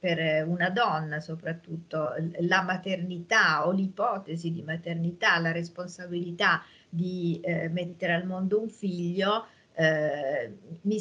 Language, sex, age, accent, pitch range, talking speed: Italian, female, 40-59, native, 165-195 Hz, 115 wpm